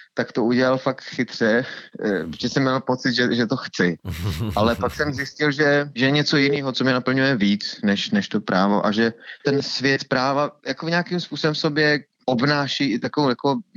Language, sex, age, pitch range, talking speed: Czech, male, 30-49, 115-140 Hz, 185 wpm